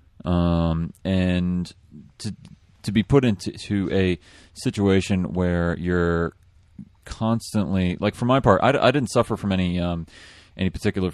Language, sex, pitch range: English, male, 85-100 Hz